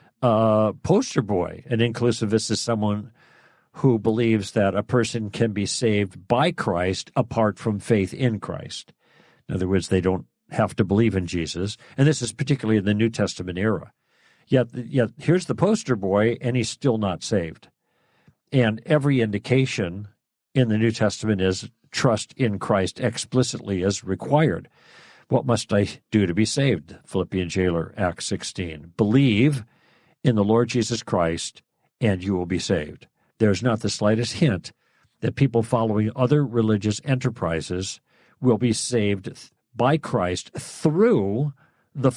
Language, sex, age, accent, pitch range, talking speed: English, male, 50-69, American, 95-120 Hz, 150 wpm